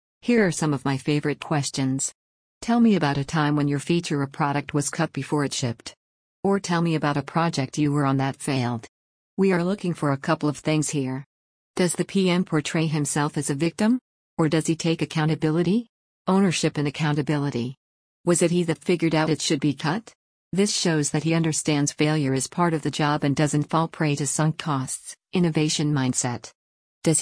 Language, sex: English, female